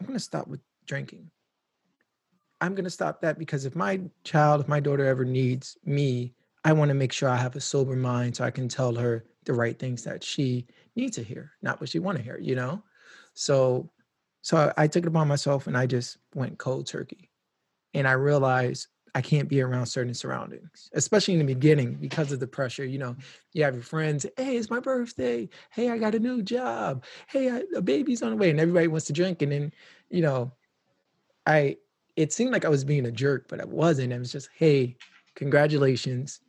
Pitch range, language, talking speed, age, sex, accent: 130-165 Hz, English, 210 wpm, 30-49, male, American